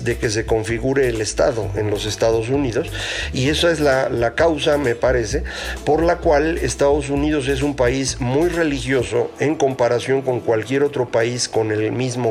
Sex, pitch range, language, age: male, 115-145 Hz, Spanish, 50-69